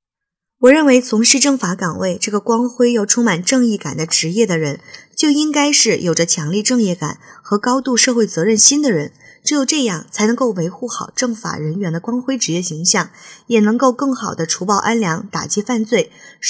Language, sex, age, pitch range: Chinese, female, 20-39, 170-240 Hz